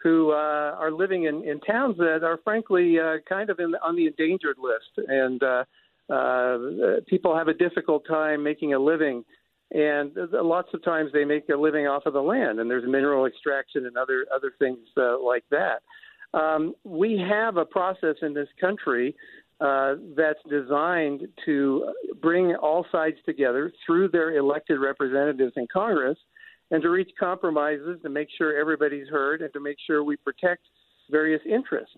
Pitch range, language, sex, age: 145-175 Hz, English, male, 50-69